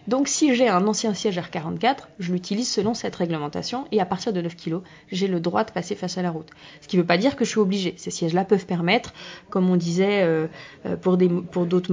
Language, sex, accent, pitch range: French, female, French, 180-225 Hz